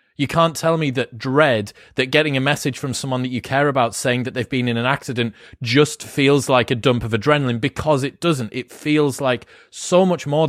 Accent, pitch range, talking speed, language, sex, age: British, 120-145 Hz, 225 wpm, English, male, 30-49